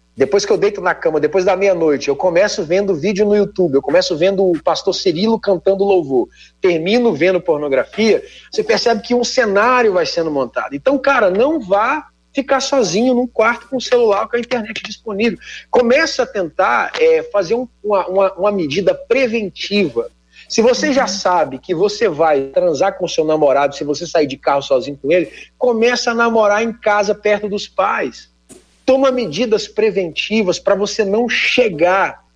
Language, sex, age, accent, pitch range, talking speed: Portuguese, male, 40-59, Brazilian, 170-245 Hz, 175 wpm